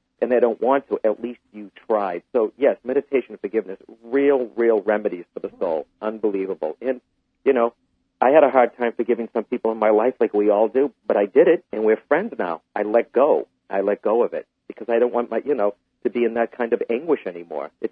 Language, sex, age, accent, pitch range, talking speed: English, male, 50-69, American, 110-160 Hz, 240 wpm